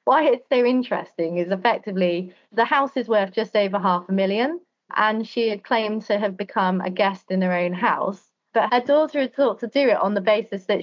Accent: British